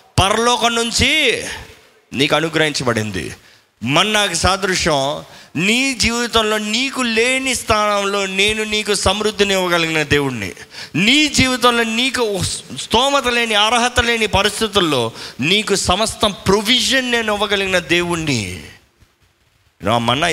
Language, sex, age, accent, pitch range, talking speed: Telugu, male, 30-49, native, 135-220 Hz, 95 wpm